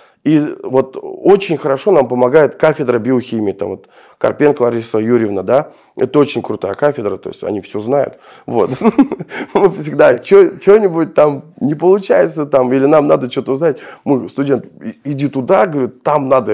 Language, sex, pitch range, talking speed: Russian, male, 110-150 Hz, 150 wpm